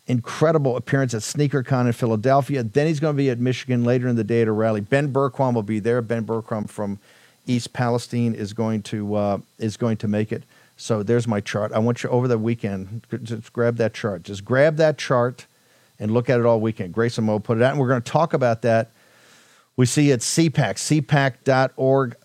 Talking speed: 220 wpm